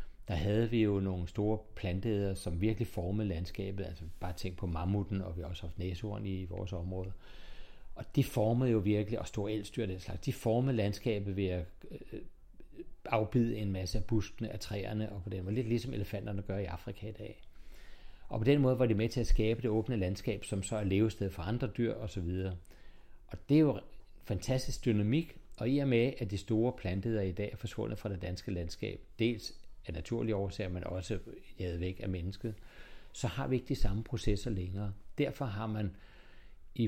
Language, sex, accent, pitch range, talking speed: Danish, male, native, 95-115 Hz, 200 wpm